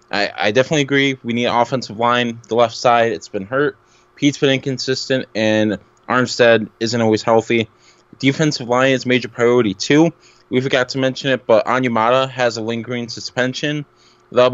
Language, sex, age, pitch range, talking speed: English, male, 10-29, 115-135 Hz, 170 wpm